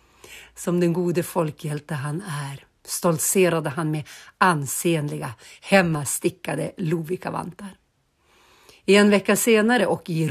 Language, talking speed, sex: English, 105 wpm, female